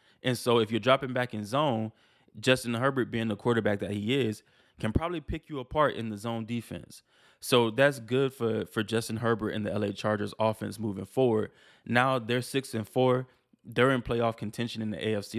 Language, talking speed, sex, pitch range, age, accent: English, 200 wpm, male, 110-125 Hz, 20-39, American